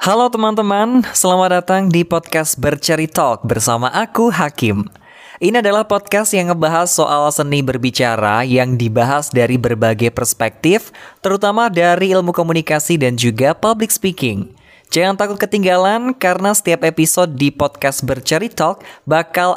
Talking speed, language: 130 wpm, Indonesian